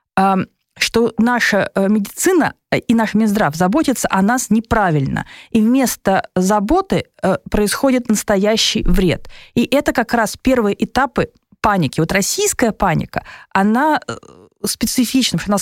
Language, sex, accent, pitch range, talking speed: Russian, female, native, 175-230 Hz, 120 wpm